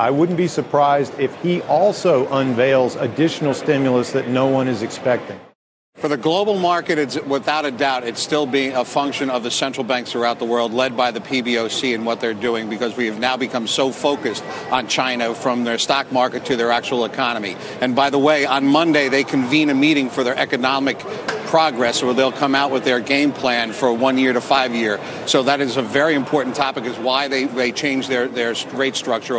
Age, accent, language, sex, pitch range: 50-69, American, Korean, male, 125-145 Hz